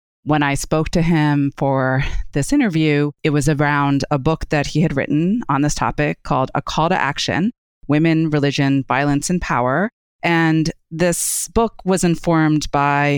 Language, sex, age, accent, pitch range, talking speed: English, female, 30-49, American, 135-165 Hz, 165 wpm